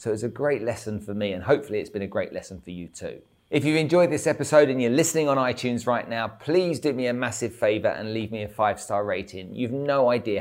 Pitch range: 105-140 Hz